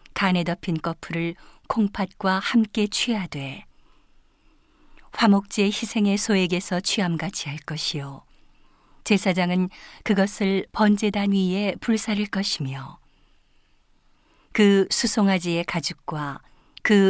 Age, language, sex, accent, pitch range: 40-59, Korean, female, native, 175-210 Hz